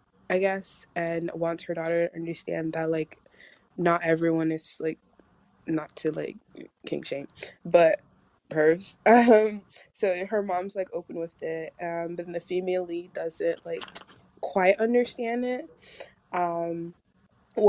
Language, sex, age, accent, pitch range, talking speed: English, female, 20-39, American, 170-220 Hz, 135 wpm